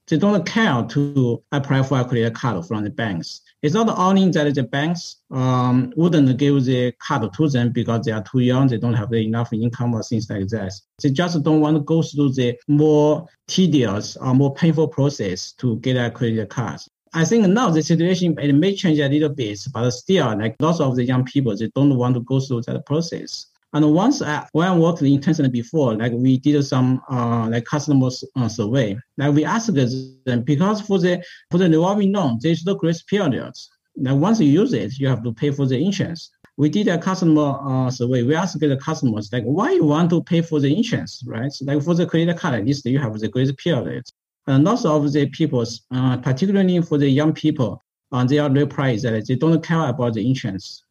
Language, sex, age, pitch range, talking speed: English, male, 50-69, 125-160 Hz, 220 wpm